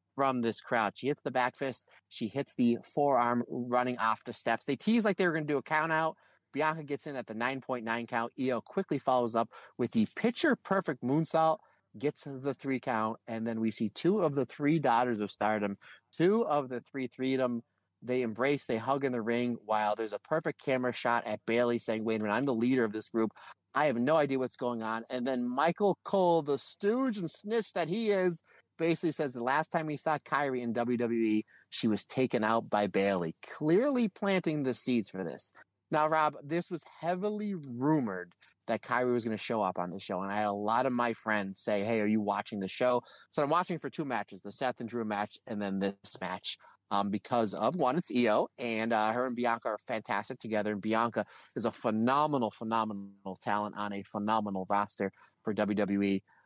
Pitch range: 110-150 Hz